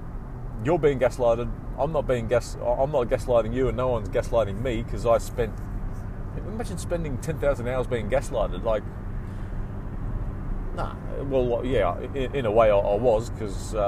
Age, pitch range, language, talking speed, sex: 30-49, 105-125 Hz, English, 160 wpm, male